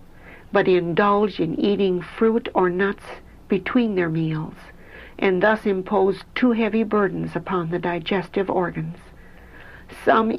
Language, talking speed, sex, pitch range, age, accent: English, 120 wpm, female, 170-215 Hz, 60-79, American